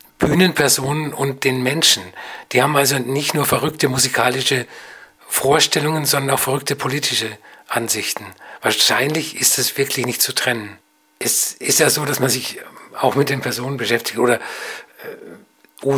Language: German